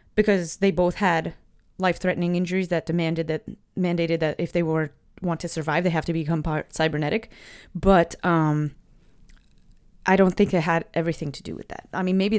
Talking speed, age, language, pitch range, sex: 185 wpm, 30-49, English, 160-200 Hz, female